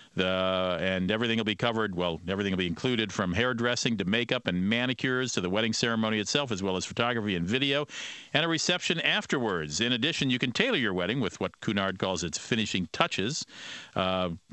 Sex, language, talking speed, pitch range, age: male, English, 190 wpm, 100-135 Hz, 50-69